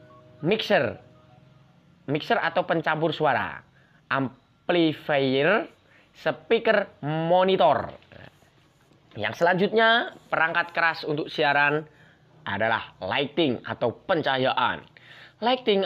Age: 20-39